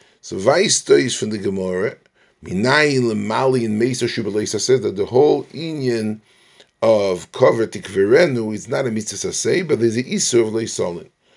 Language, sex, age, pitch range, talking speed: English, male, 40-59, 105-135 Hz, 160 wpm